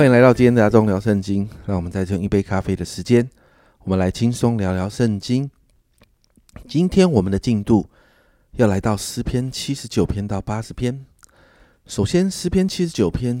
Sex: male